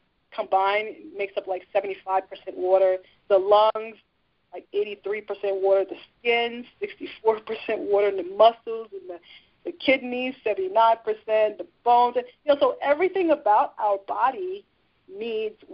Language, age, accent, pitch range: English, 30-49, American, 190-245 Hz